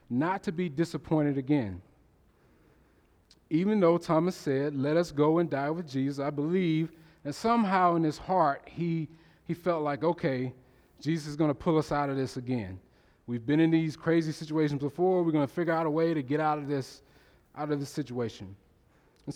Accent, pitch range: American, 145-175 Hz